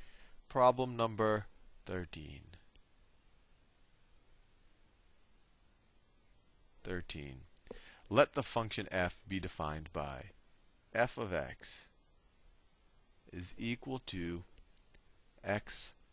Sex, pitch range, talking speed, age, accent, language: male, 85-115 Hz, 65 wpm, 40-59, American, English